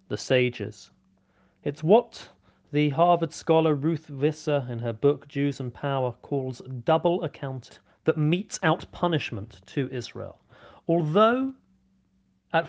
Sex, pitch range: male, 130-185 Hz